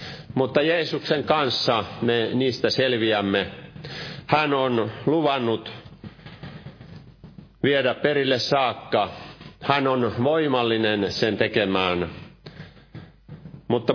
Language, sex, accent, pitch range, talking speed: Finnish, male, native, 105-130 Hz, 75 wpm